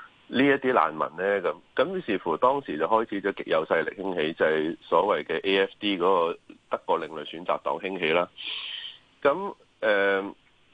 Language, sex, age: Chinese, male, 30-49